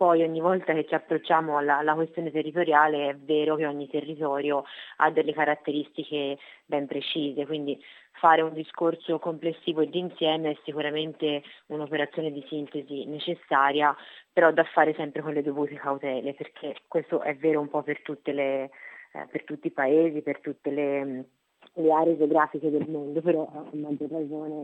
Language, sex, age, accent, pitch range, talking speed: Italian, female, 30-49, native, 145-160 Hz, 160 wpm